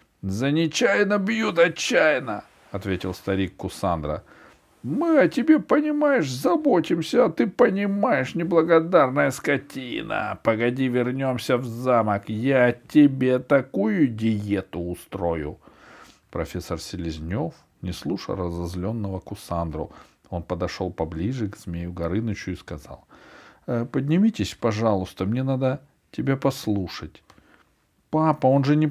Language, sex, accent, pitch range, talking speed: Russian, male, native, 90-140 Hz, 110 wpm